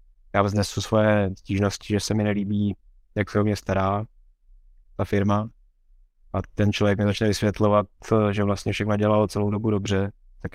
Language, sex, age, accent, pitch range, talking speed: Czech, male, 20-39, native, 95-105 Hz, 165 wpm